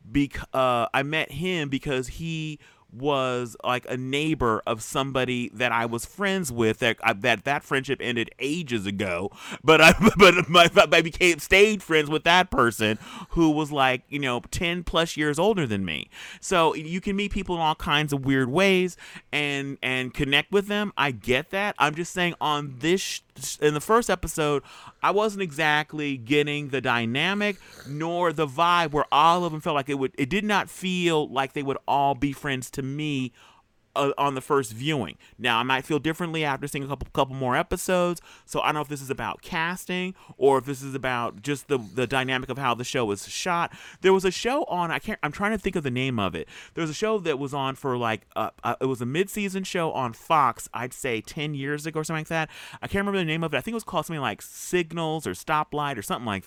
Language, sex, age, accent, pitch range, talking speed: English, male, 30-49, American, 130-170 Hz, 220 wpm